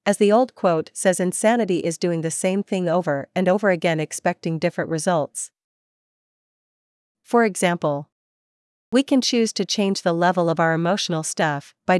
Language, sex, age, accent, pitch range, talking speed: English, female, 40-59, American, 165-200 Hz, 160 wpm